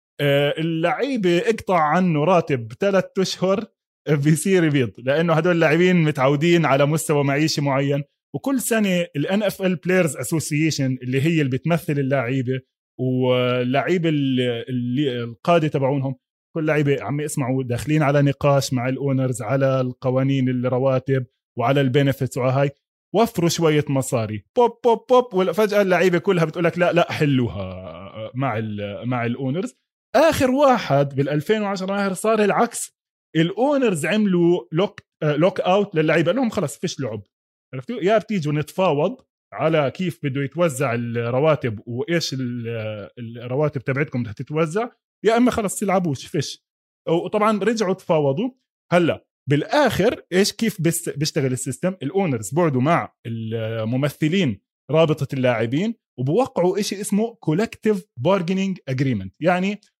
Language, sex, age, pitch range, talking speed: Arabic, male, 20-39, 130-185 Hz, 120 wpm